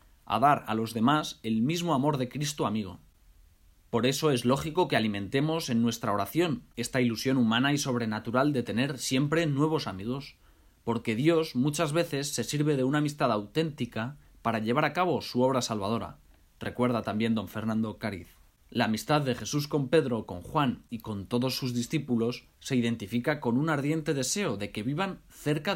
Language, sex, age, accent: Spanish, male, 20-39, Spanish